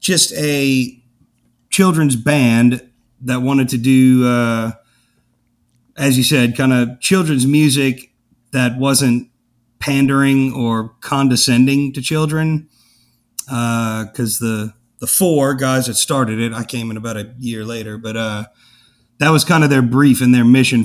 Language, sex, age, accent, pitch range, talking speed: English, male, 40-59, American, 120-135 Hz, 145 wpm